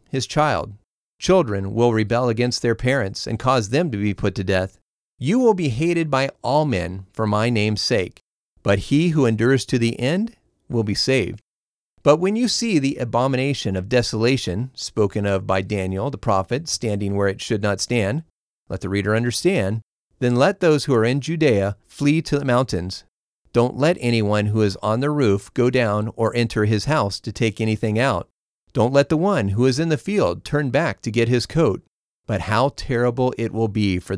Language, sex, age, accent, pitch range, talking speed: English, male, 40-59, American, 105-140 Hz, 195 wpm